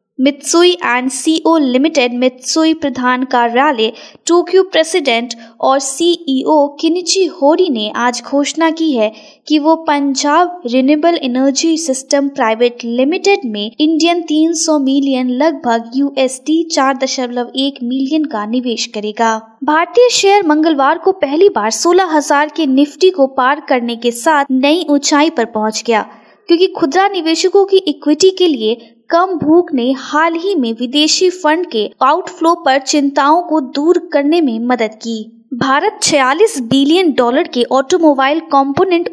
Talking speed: 140 wpm